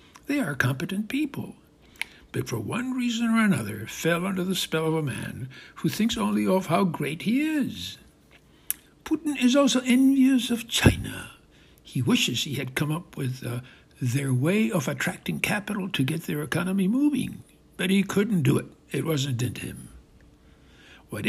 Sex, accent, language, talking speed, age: male, American, English, 165 wpm, 60-79